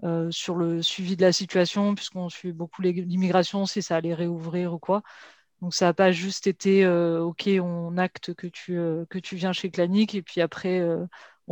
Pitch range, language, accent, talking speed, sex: 175-195 Hz, French, French, 210 wpm, female